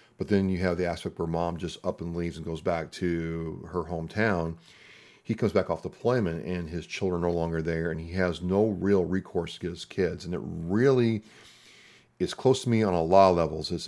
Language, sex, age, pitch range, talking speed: English, male, 40-59, 85-95 Hz, 230 wpm